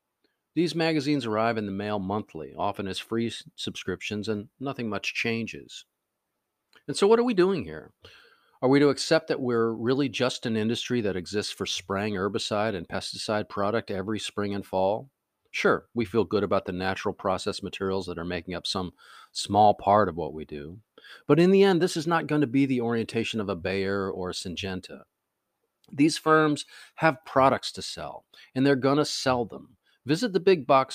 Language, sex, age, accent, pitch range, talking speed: English, male, 50-69, American, 100-140 Hz, 190 wpm